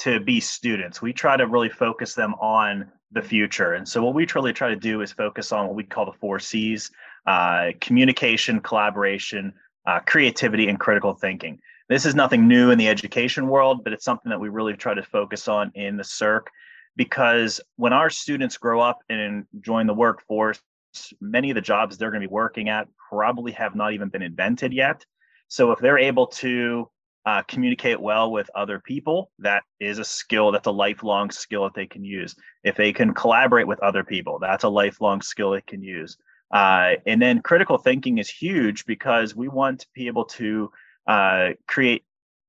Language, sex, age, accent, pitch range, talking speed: English, male, 30-49, American, 105-130 Hz, 195 wpm